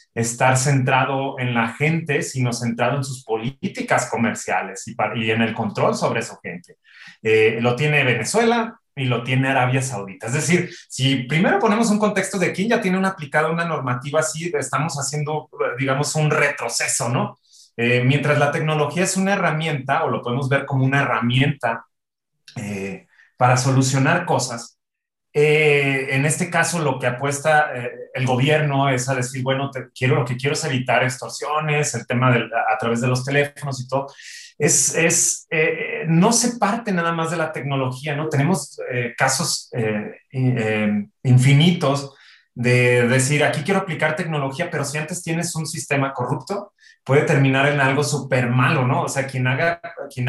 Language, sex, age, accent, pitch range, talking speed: Spanish, male, 30-49, Mexican, 125-155 Hz, 170 wpm